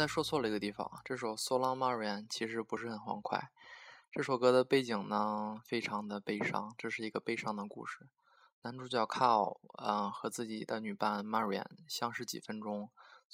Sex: male